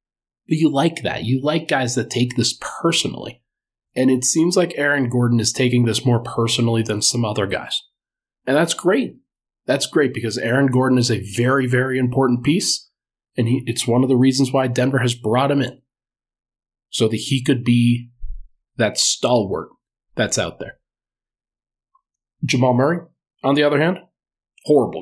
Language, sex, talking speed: English, male, 170 wpm